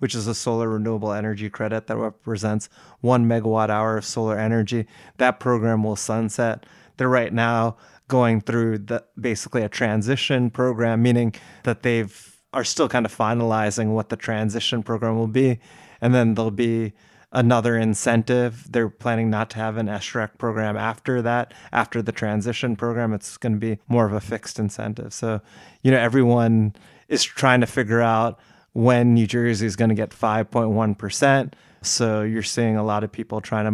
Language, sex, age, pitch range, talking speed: English, male, 20-39, 110-120 Hz, 175 wpm